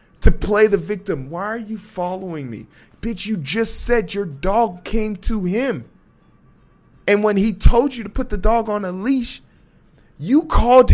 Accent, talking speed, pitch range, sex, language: American, 175 wpm, 155-210 Hz, male, English